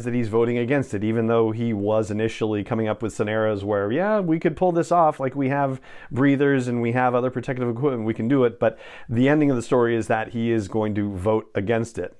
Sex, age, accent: male, 40-59, American